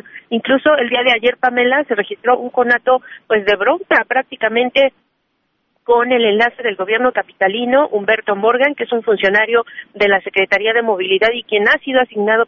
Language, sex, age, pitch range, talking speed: Spanish, female, 40-59, 200-240 Hz, 175 wpm